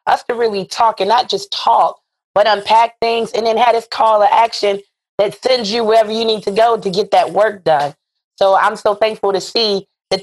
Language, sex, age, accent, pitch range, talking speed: English, female, 20-39, American, 175-225 Hz, 225 wpm